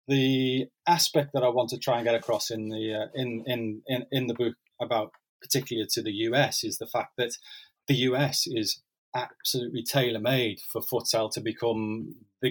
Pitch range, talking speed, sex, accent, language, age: 110-130 Hz, 195 wpm, male, British, English, 30-49